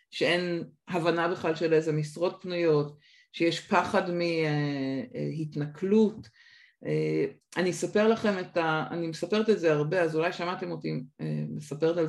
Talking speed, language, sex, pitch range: 130 wpm, Hebrew, female, 155-215 Hz